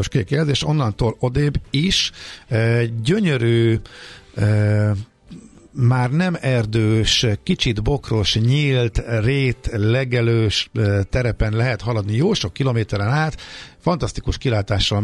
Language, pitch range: Hungarian, 105-125 Hz